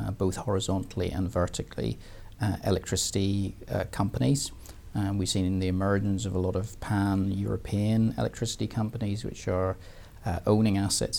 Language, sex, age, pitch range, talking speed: English, male, 40-59, 95-110 Hz, 140 wpm